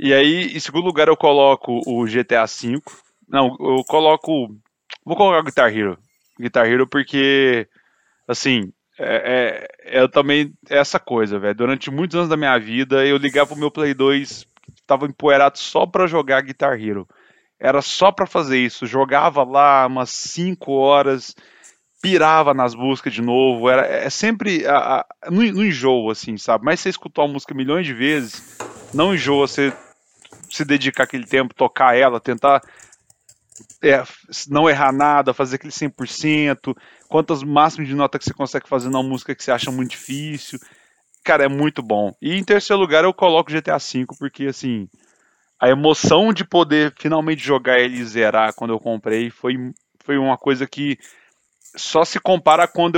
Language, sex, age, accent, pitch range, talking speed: Portuguese, male, 20-39, Brazilian, 130-155 Hz, 165 wpm